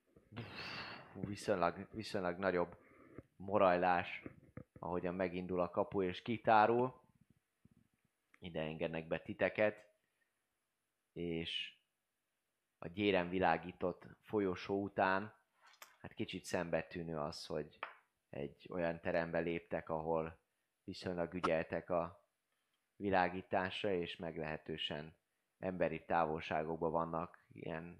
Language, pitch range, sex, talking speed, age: Hungarian, 85-100 Hz, male, 85 wpm, 20-39